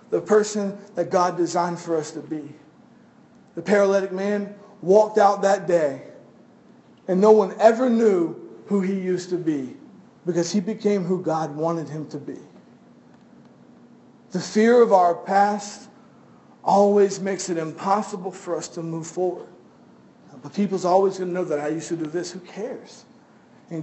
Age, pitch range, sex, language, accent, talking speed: 50-69, 170-215 Hz, male, English, American, 160 wpm